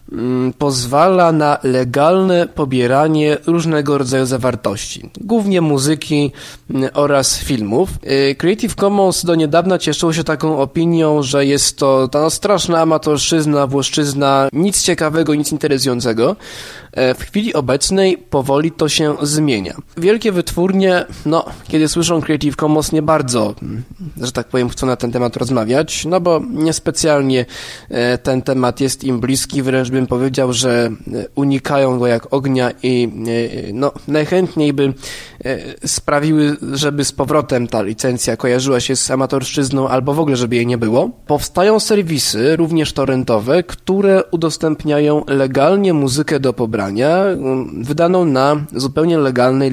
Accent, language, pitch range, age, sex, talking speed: native, Polish, 130-160 Hz, 20-39, male, 125 wpm